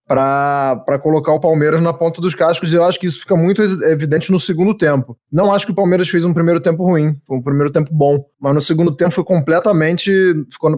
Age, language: 20-39, Portuguese